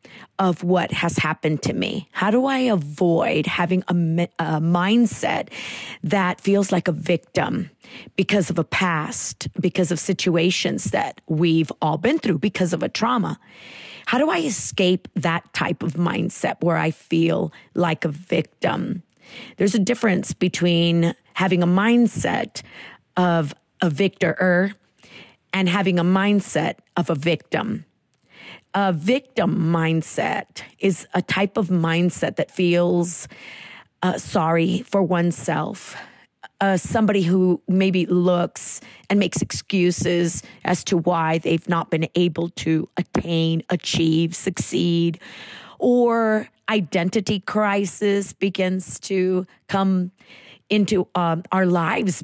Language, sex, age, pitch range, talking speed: English, female, 40-59, 170-195 Hz, 125 wpm